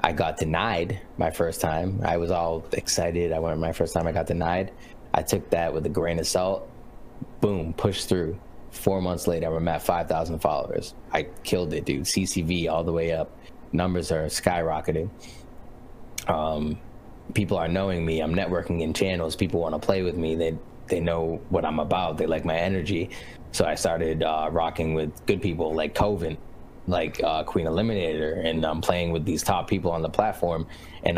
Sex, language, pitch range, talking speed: male, English, 80-100 Hz, 190 wpm